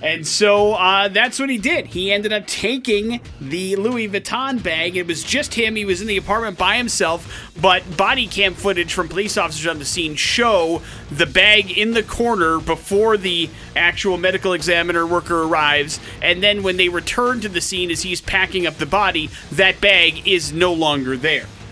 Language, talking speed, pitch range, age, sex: English, 190 wpm, 170-210 Hz, 30-49, male